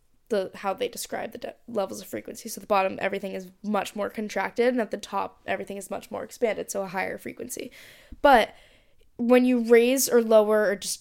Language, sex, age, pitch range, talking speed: English, female, 10-29, 195-230 Hz, 205 wpm